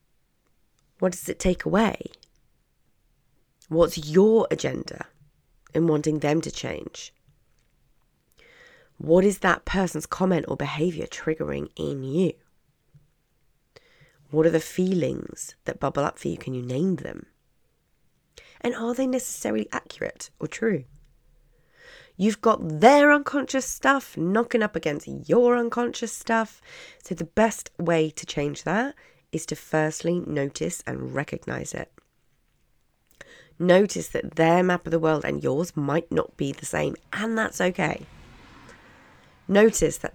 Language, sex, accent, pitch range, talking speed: English, female, British, 155-225 Hz, 130 wpm